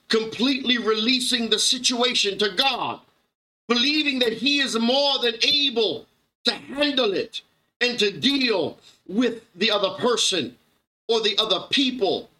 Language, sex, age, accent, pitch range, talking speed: English, male, 50-69, American, 215-255 Hz, 130 wpm